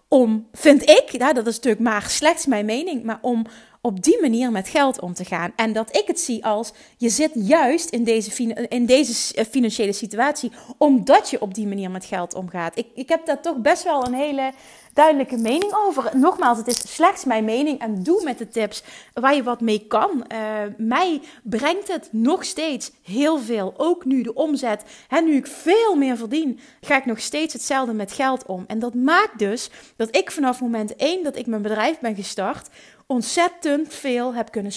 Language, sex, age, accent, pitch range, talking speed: Dutch, female, 30-49, Dutch, 220-275 Hz, 200 wpm